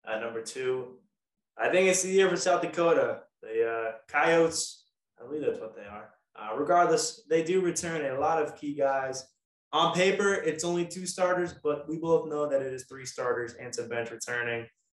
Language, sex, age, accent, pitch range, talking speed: English, male, 20-39, American, 130-165 Hz, 195 wpm